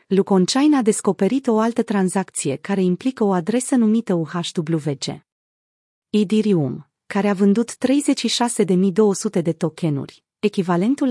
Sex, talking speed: female, 110 wpm